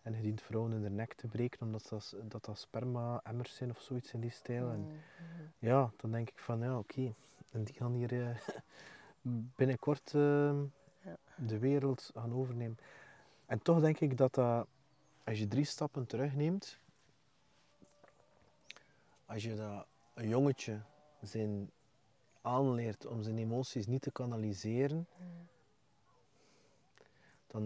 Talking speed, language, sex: 145 wpm, English, male